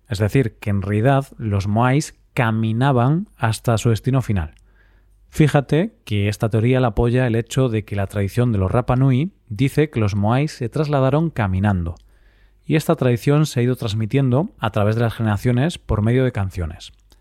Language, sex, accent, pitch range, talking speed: Spanish, male, Spanish, 105-140 Hz, 180 wpm